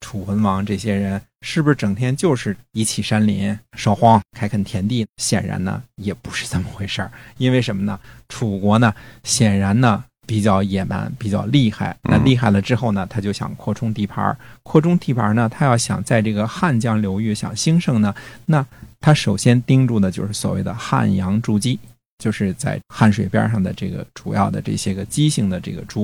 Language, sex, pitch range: Chinese, male, 100-120 Hz